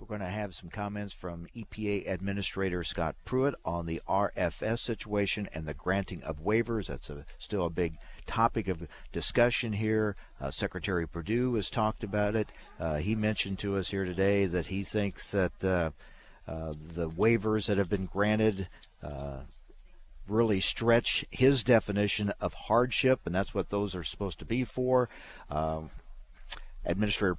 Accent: American